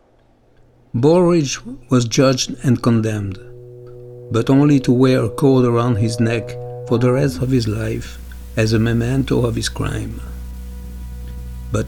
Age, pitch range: 60-79, 120-150 Hz